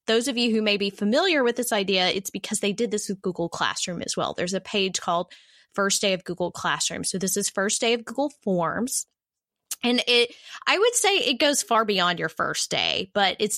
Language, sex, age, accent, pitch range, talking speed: English, female, 20-39, American, 185-230 Hz, 225 wpm